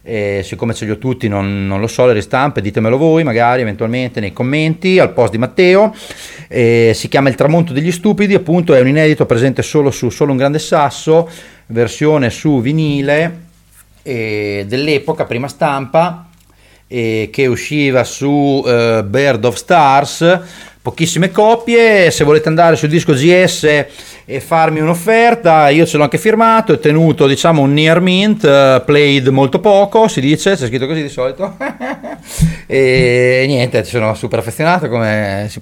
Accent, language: native, Italian